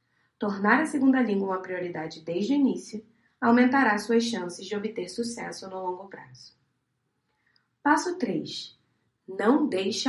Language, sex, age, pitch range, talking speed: Portuguese, female, 20-39, 185-250 Hz, 130 wpm